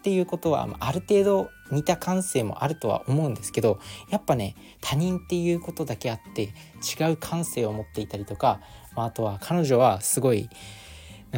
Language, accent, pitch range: Japanese, native, 105-150 Hz